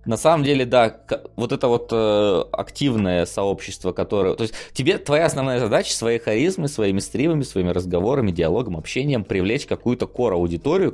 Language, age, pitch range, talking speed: Russian, 20-39, 90-120 Hz, 150 wpm